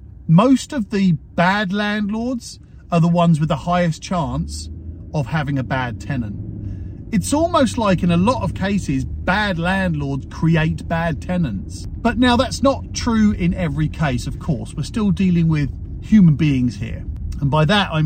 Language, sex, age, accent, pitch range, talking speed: English, male, 40-59, British, 135-190 Hz, 170 wpm